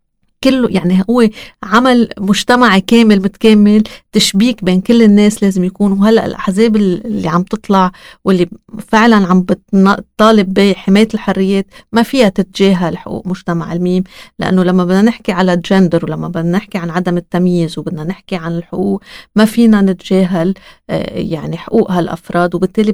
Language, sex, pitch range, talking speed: Arabic, female, 185-215 Hz, 140 wpm